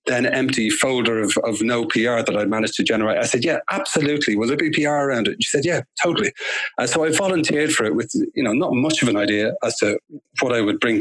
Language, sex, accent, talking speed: English, male, British, 250 wpm